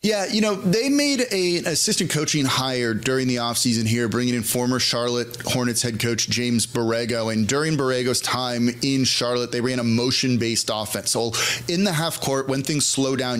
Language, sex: English, male